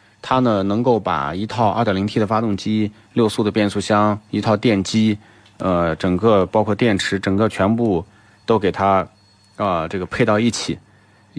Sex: male